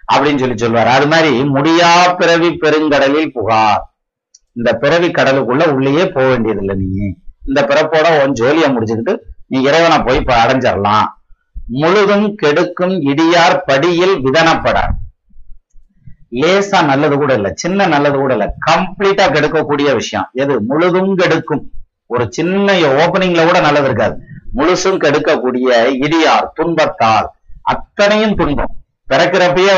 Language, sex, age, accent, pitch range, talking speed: Tamil, male, 50-69, native, 135-175 Hz, 110 wpm